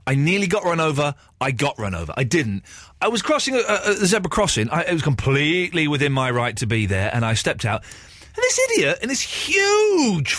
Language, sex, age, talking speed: English, male, 30-49, 215 wpm